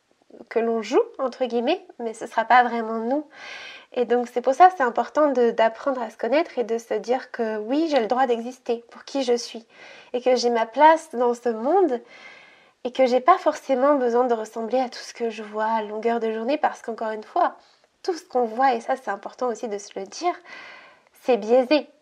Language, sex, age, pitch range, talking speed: French, female, 20-39, 235-295 Hz, 225 wpm